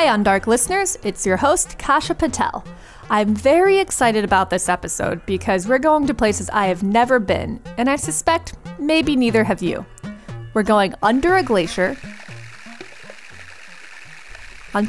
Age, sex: 30-49, female